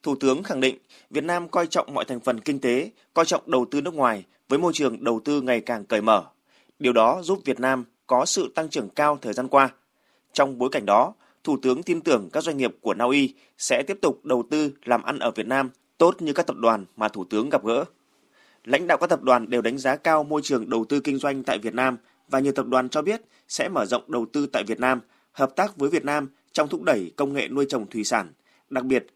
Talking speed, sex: 250 wpm, male